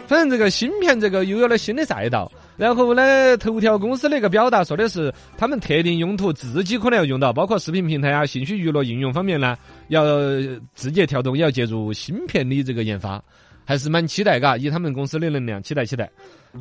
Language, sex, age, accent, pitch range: Chinese, male, 30-49, native, 155-240 Hz